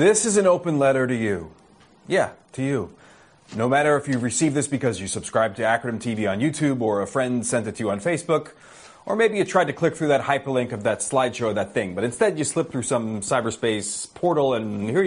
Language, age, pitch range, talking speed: English, 30-49, 125-155 Hz, 230 wpm